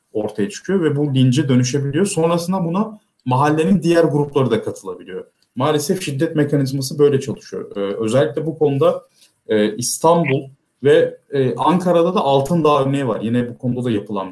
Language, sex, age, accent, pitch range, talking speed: Turkish, male, 30-49, native, 115-155 Hz, 150 wpm